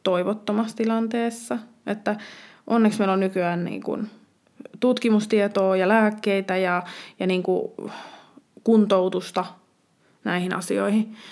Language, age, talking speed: Finnish, 20-39, 100 wpm